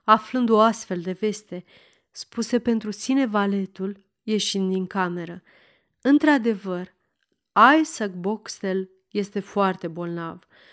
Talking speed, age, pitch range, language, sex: 100 wpm, 30-49, 190-240 Hz, Romanian, female